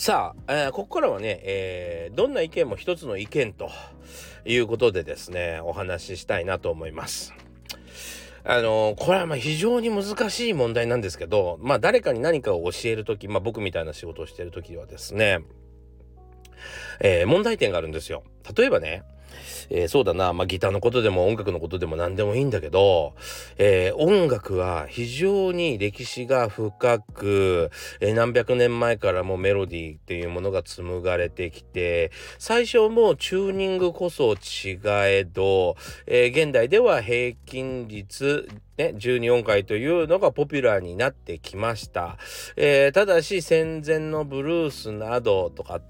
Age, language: 40-59, Japanese